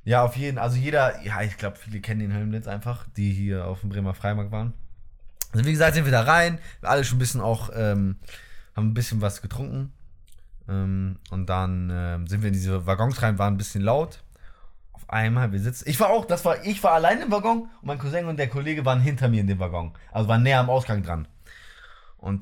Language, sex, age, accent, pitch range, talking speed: German, male, 20-39, German, 100-140 Hz, 230 wpm